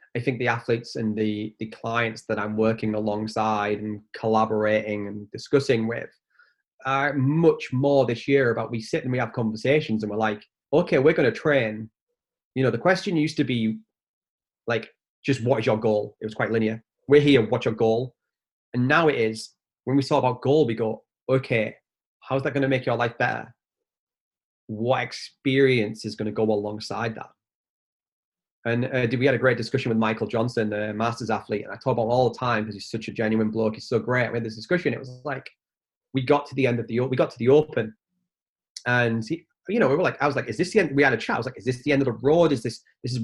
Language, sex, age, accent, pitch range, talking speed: English, male, 20-39, British, 110-135 Hz, 235 wpm